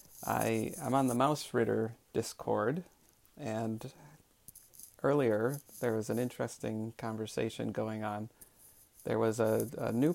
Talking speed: 120 wpm